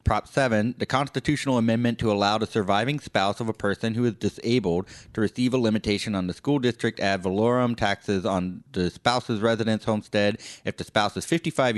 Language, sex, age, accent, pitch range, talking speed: English, male, 30-49, American, 90-115 Hz, 190 wpm